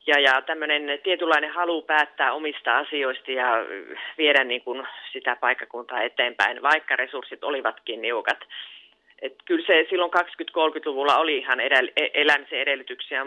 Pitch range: 125-165 Hz